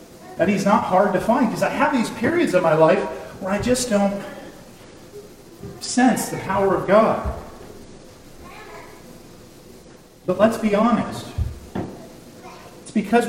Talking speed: 130 wpm